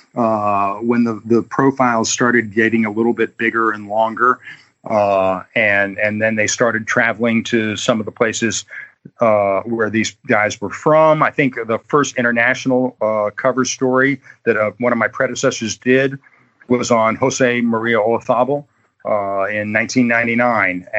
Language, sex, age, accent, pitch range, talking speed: English, male, 50-69, American, 105-130 Hz, 155 wpm